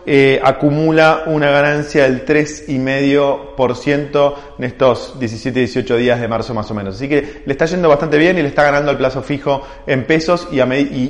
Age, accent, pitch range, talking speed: 20-39, Argentinian, 130-160 Hz, 185 wpm